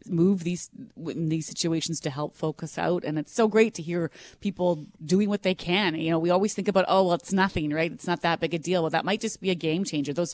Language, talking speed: English, 265 wpm